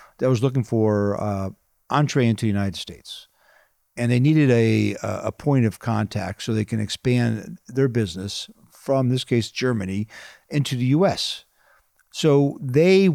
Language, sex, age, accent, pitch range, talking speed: English, male, 50-69, American, 110-155 Hz, 150 wpm